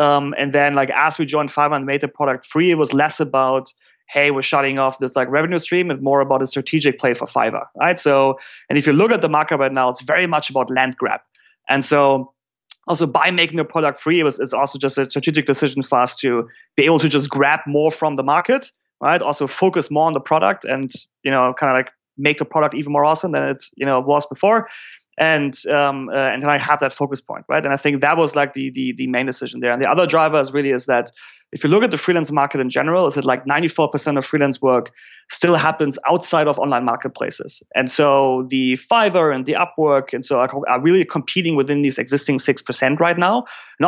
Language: English